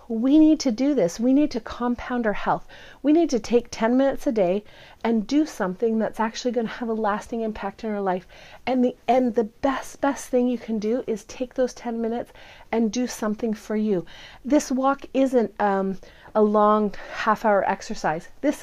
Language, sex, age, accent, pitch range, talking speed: English, female, 40-59, American, 215-260 Hz, 205 wpm